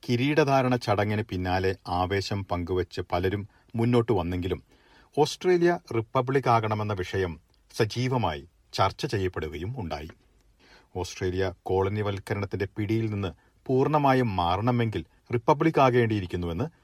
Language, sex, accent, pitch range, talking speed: Malayalam, male, native, 95-125 Hz, 85 wpm